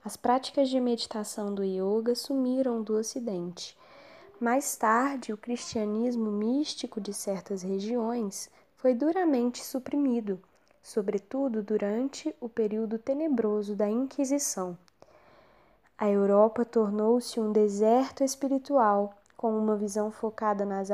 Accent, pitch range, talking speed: Brazilian, 210-265 Hz, 110 wpm